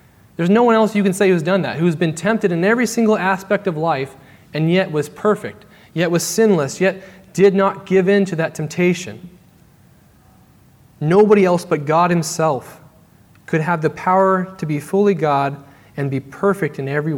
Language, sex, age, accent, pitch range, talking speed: English, male, 30-49, American, 150-195 Hz, 180 wpm